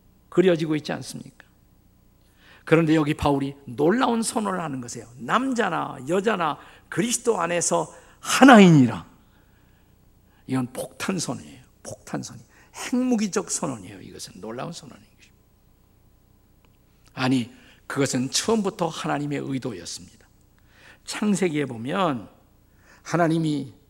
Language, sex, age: Korean, male, 50-69